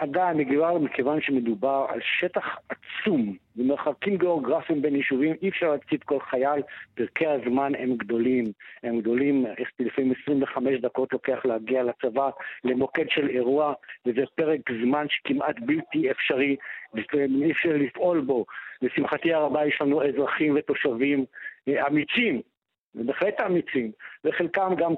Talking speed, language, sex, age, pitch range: 125 wpm, Hebrew, male, 60-79, 135-170 Hz